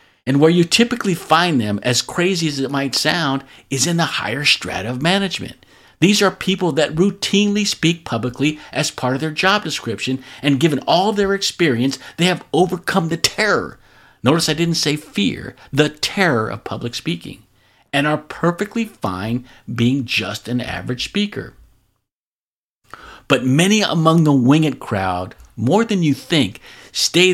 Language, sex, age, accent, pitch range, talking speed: English, male, 50-69, American, 125-170 Hz, 160 wpm